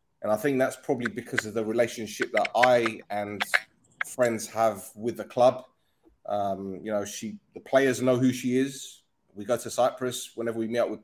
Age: 20-39